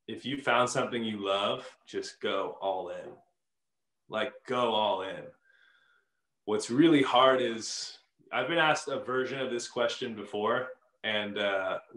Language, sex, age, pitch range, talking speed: English, male, 20-39, 100-140 Hz, 145 wpm